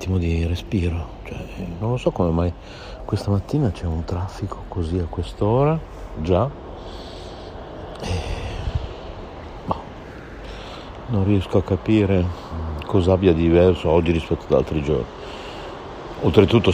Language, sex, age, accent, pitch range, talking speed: Italian, male, 60-79, native, 80-95 Hz, 120 wpm